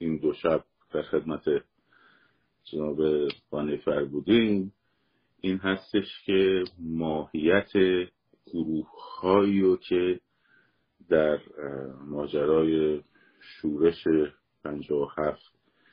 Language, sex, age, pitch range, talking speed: Persian, male, 50-69, 80-95 Hz, 70 wpm